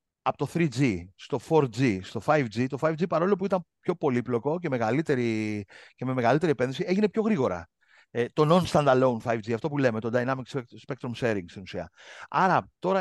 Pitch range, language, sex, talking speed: 125-190 Hz, Greek, male, 175 wpm